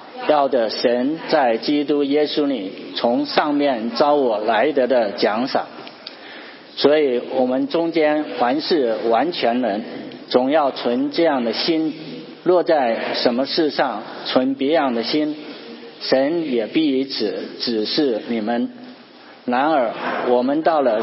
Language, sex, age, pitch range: English, male, 50-69, 125-170 Hz